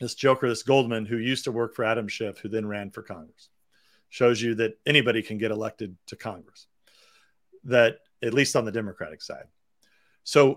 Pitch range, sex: 120-160 Hz, male